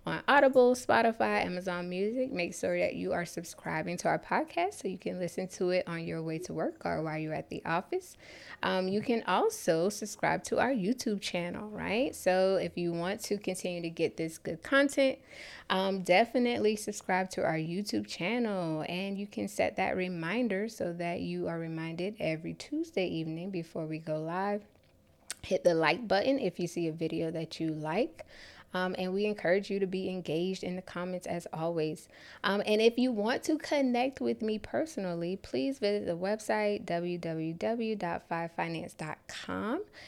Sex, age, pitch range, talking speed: female, 10-29, 175-230 Hz, 175 wpm